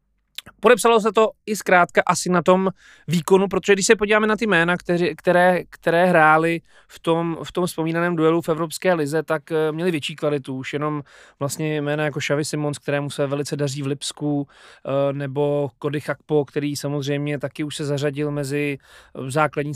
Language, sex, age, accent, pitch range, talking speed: Czech, male, 30-49, native, 150-175 Hz, 170 wpm